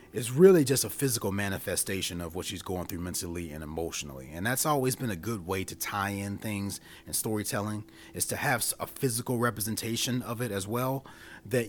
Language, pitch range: English, 90-125 Hz